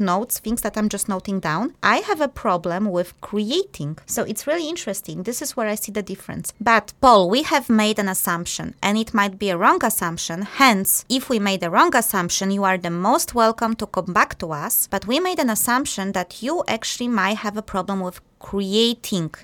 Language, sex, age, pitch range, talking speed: English, female, 20-39, 185-230 Hz, 215 wpm